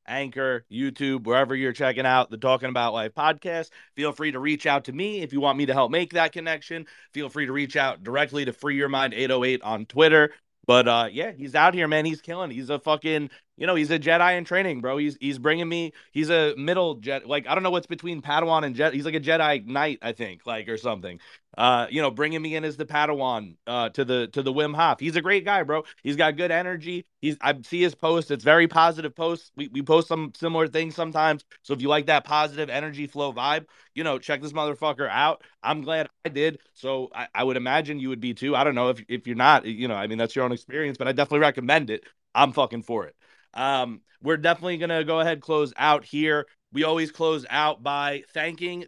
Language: English